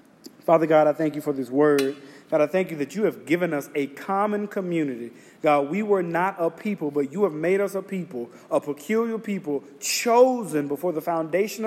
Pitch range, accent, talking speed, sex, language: 165-200 Hz, American, 205 wpm, male, English